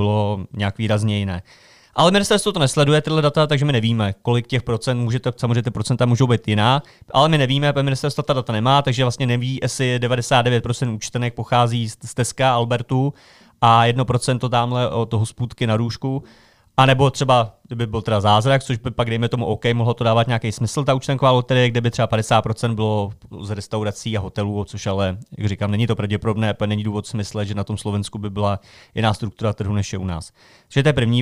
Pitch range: 110-135 Hz